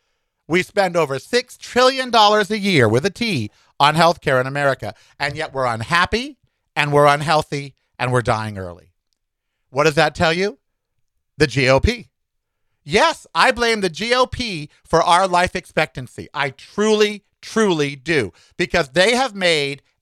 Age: 50-69